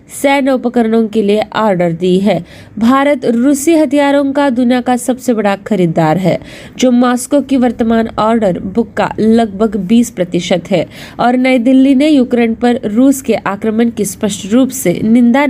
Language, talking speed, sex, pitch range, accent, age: Marathi, 155 wpm, female, 205-255 Hz, native, 20-39